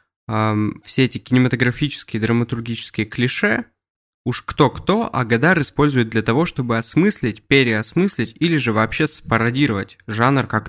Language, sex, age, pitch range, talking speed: Russian, male, 20-39, 110-140 Hz, 120 wpm